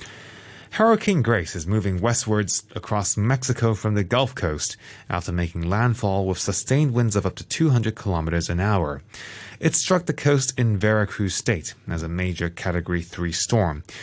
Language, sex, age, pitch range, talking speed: English, male, 30-49, 100-150 Hz, 160 wpm